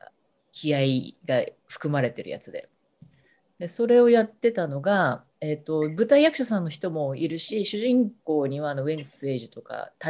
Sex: female